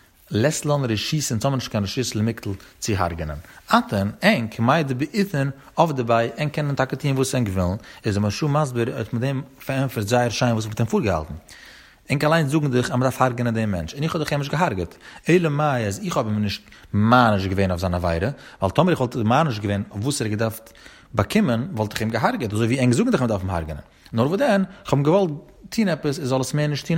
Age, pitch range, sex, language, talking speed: 30-49, 105-145 Hz, male, Hebrew, 145 wpm